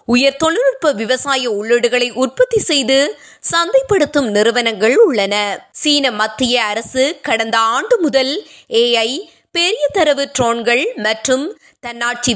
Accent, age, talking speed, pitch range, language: native, 20-39, 100 wpm, 235-310 Hz, Tamil